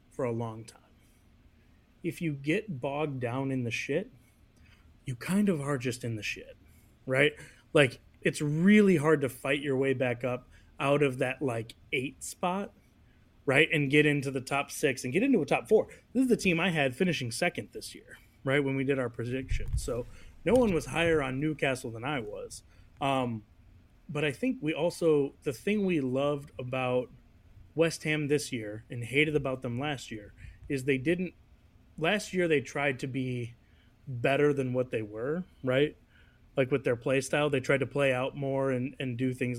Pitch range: 125-155 Hz